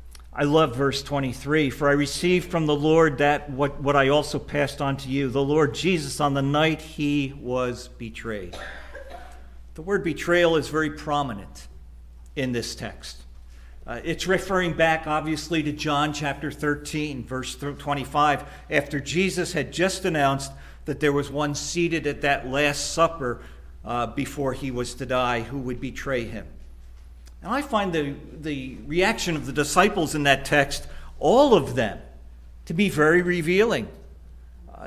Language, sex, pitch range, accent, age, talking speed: English, male, 120-165 Hz, American, 50-69, 160 wpm